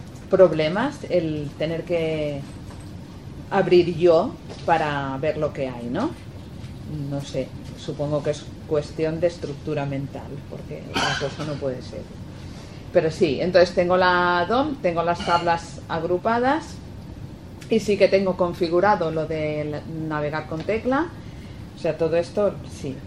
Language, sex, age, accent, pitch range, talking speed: Spanish, female, 40-59, Spanish, 145-185 Hz, 135 wpm